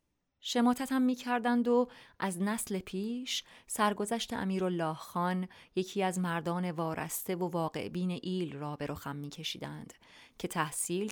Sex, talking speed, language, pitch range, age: female, 130 wpm, English, 175-225 Hz, 30-49